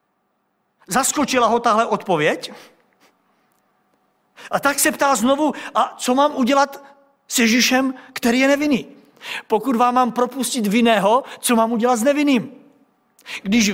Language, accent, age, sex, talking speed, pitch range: Czech, native, 50-69, male, 125 wpm, 230-275 Hz